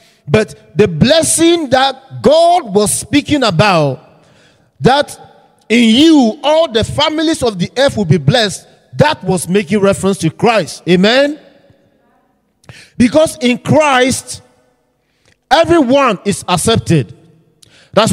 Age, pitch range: 50-69, 165-250 Hz